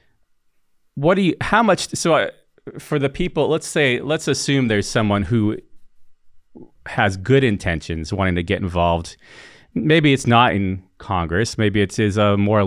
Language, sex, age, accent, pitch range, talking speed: English, male, 30-49, American, 95-130 Hz, 160 wpm